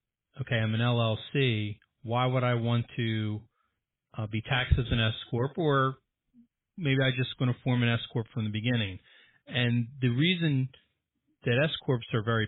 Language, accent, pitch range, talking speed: English, American, 110-125 Hz, 180 wpm